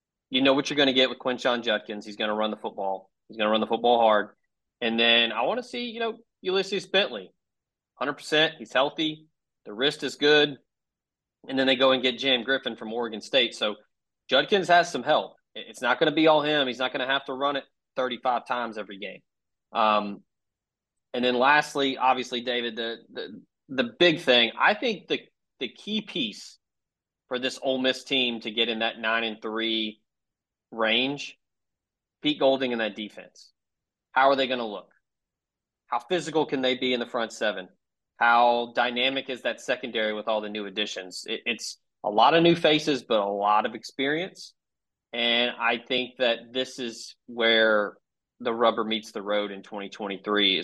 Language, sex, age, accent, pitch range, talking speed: English, male, 30-49, American, 110-135 Hz, 190 wpm